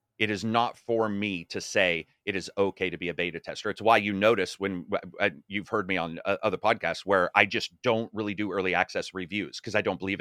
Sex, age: male, 30-49